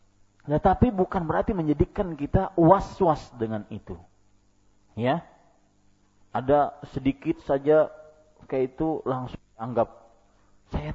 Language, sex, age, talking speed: Malay, male, 40-59, 100 wpm